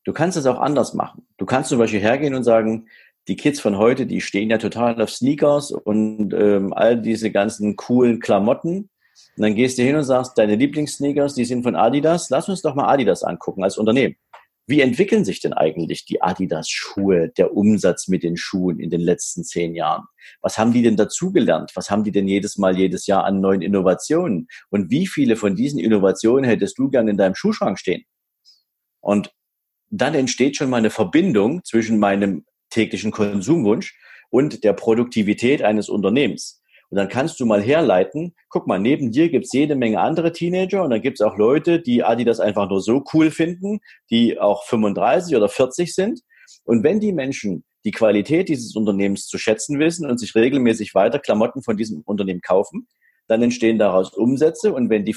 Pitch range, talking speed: 105-145 Hz, 190 wpm